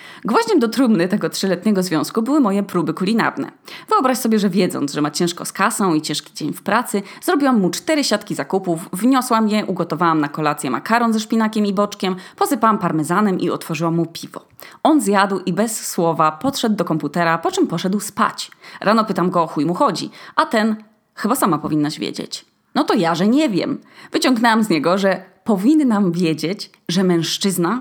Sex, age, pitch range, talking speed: female, 20-39, 165-230 Hz, 180 wpm